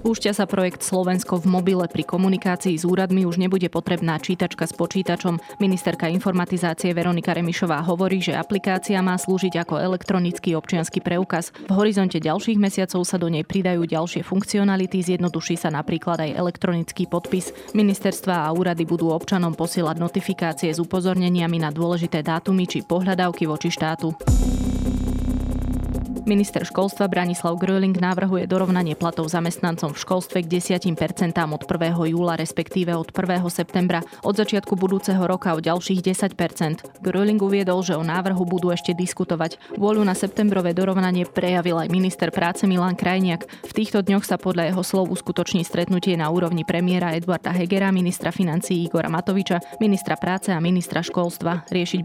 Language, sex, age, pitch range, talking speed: Slovak, female, 20-39, 170-190 Hz, 150 wpm